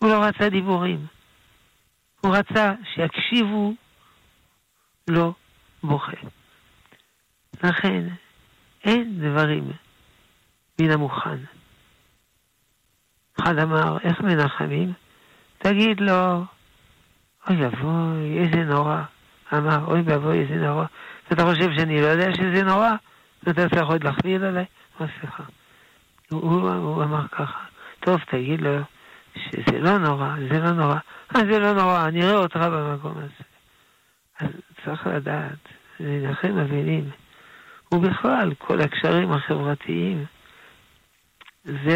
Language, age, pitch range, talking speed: Hebrew, 60-79, 150-185 Hz, 105 wpm